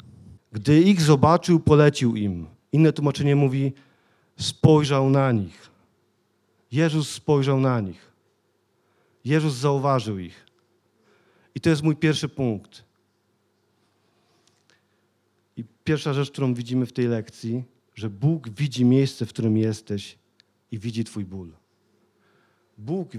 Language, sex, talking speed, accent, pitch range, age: Polish, male, 115 wpm, native, 115-145 Hz, 40-59